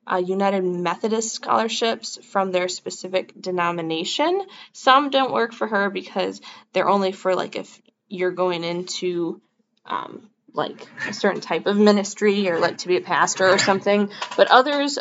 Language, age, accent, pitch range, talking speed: English, 10-29, American, 180-220 Hz, 155 wpm